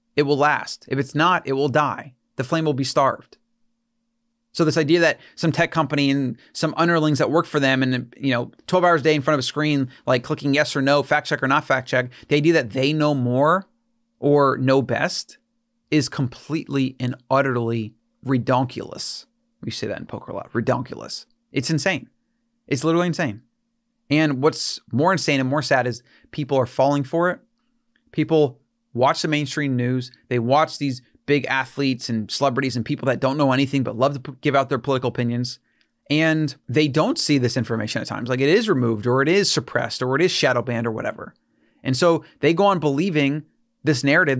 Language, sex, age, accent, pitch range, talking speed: English, male, 30-49, American, 130-160 Hz, 200 wpm